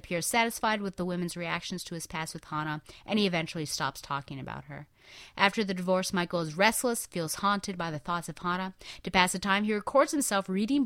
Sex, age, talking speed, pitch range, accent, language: female, 30-49, 215 wpm, 165-205 Hz, American, English